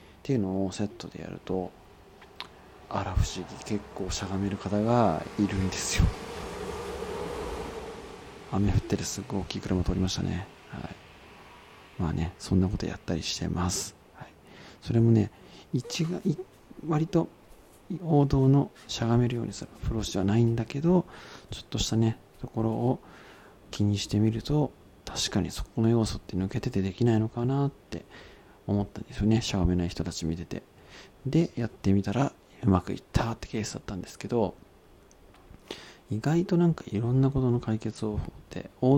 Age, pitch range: 40-59, 95-120 Hz